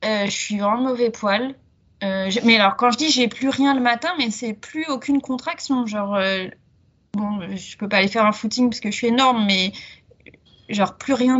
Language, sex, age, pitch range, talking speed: French, female, 20-39, 190-235 Hz, 215 wpm